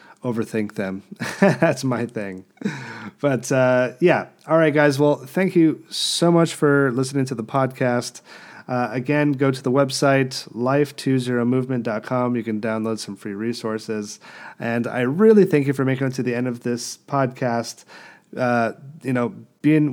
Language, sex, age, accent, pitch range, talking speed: English, male, 30-49, American, 110-135 Hz, 155 wpm